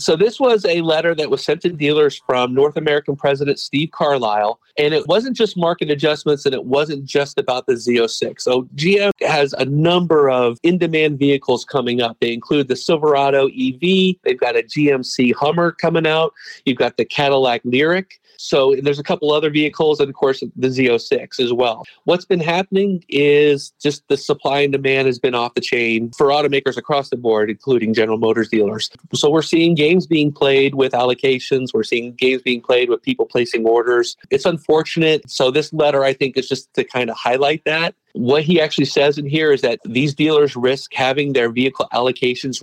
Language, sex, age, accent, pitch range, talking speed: English, male, 40-59, American, 125-155 Hz, 195 wpm